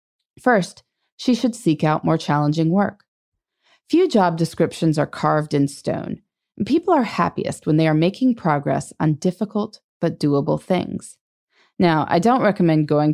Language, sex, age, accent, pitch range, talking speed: English, female, 30-49, American, 155-235 Hz, 155 wpm